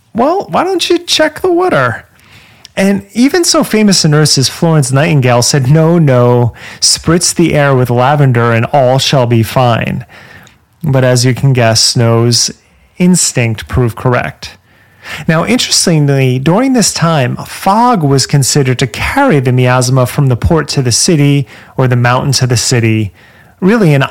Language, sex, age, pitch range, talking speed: English, male, 30-49, 125-165 Hz, 160 wpm